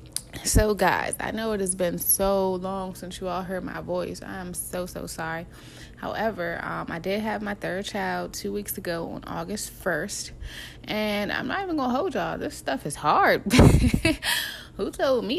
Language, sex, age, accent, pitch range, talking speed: English, female, 20-39, American, 165-195 Hz, 190 wpm